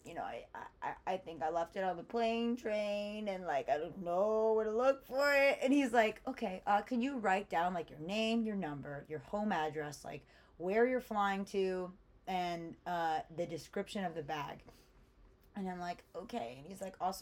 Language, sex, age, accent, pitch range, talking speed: English, female, 20-39, American, 170-235 Hz, 210 wpm